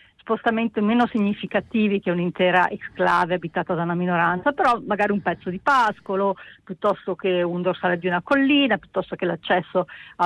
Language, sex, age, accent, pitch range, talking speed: Italian, female, 40-59, native, 180-225 Hz, 160 wpm